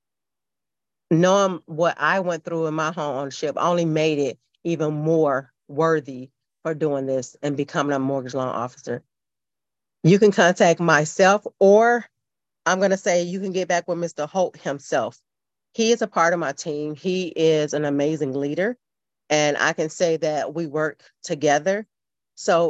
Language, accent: English, American